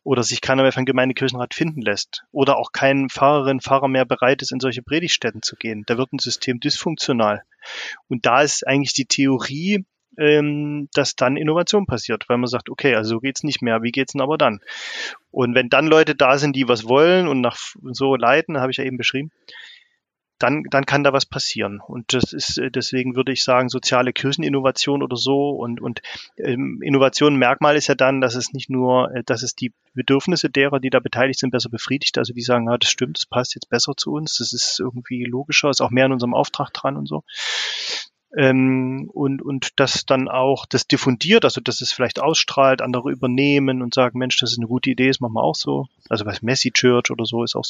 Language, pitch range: German, 125-140 Hz